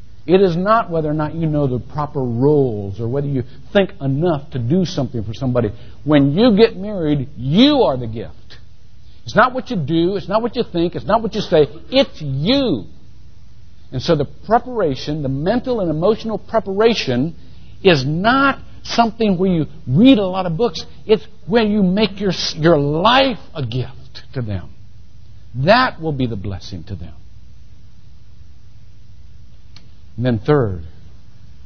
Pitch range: 105-170 Hz